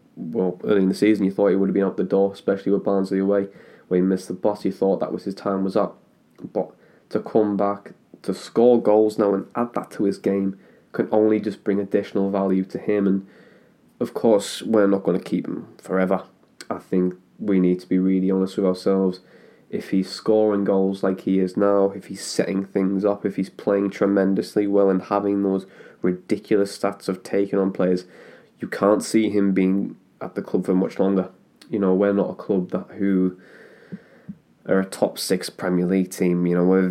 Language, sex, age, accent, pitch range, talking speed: English, male, 20-39, British, 95-105 Hz, 210 wpm